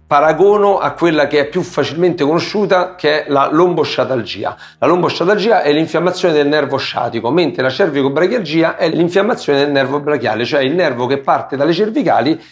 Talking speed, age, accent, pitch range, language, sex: 165 wpm, 40-59, native, 135-180 Hz, Italian, male